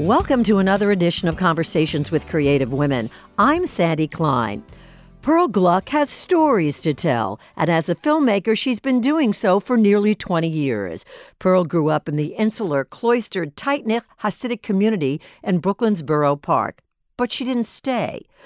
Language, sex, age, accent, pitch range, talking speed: English, female, 60-79, American, 150-225 Hz, 160 wpm